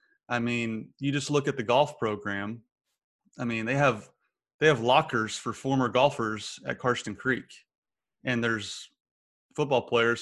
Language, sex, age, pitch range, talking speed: English, male, 30-49, 115-155 Hz, 155 wpm